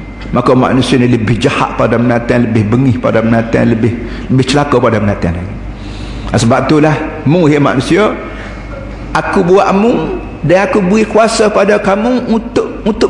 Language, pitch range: Malay, 120-195 Hz